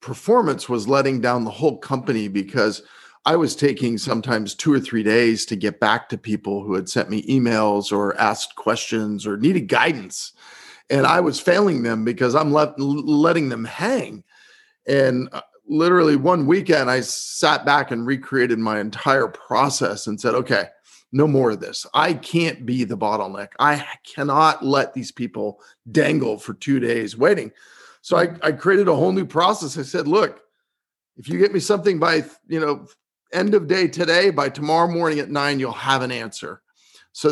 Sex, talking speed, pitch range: male, 175 wpm, 120-165 Hz